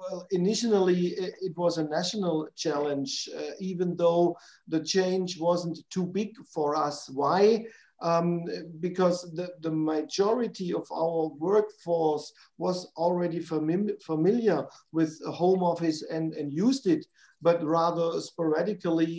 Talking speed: 120 wpm